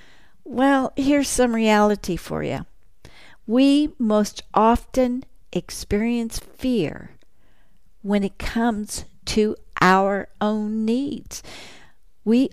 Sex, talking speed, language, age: female, 90 wpm, English, 50-69